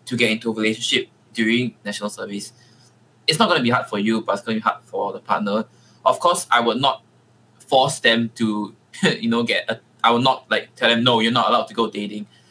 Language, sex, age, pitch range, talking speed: English, male, 20-39, 110-130 Hz, 240 wpm